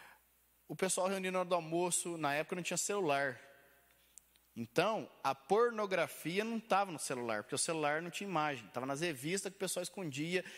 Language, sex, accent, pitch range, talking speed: Portuguese, male, Brazilian, 140-190 Hz, 180 wpm